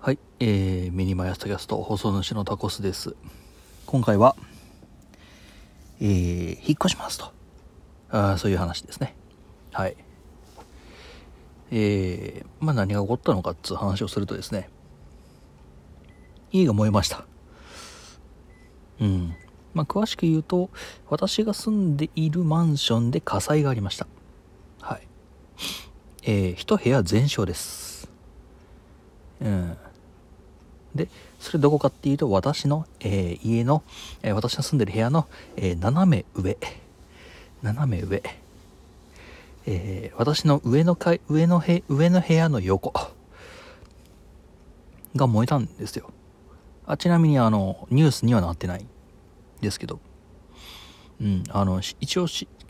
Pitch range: 90-140 Hz